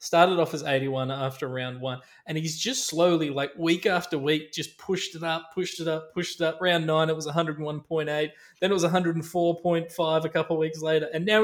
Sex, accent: male, Australian